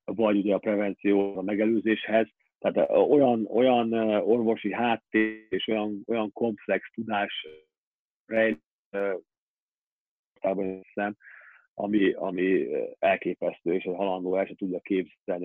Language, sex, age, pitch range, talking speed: Hungarian, male, 40-59, 95-110 Hz, 95 wpm